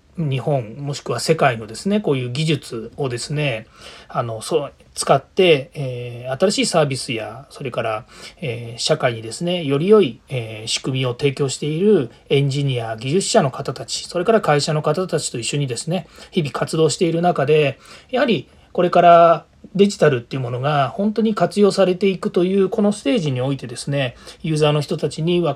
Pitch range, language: 125-175 Hz, Japanese